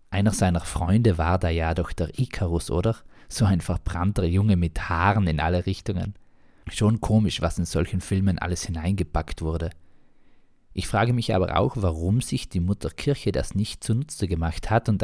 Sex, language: male, German